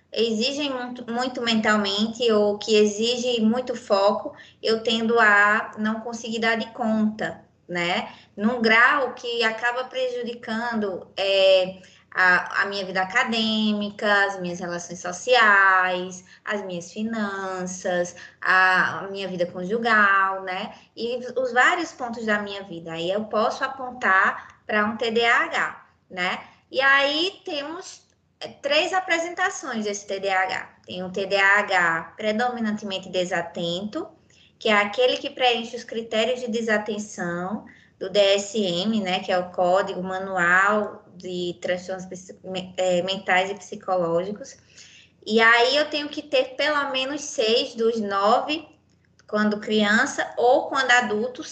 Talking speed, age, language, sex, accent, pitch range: 125 wpm, 20-39, Portuguese, female, Brazilian, 190-245 Hz